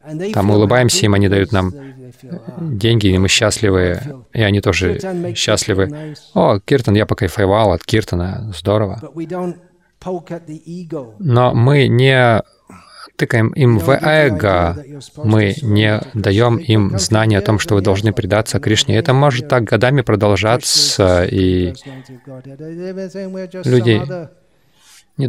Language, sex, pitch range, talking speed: Russian, male, 105-140 Hz, 115 wpm